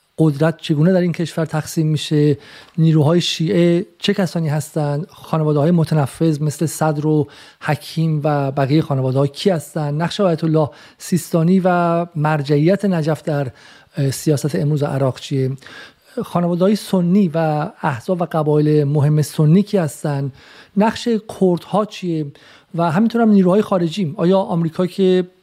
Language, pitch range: Persian, 150-185 Hz